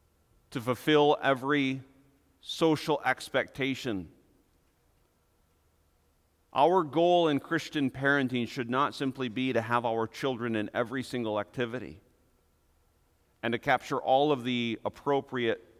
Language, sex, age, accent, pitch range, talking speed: English, male, 50-69, American, 85-145 Hz, 110 wpm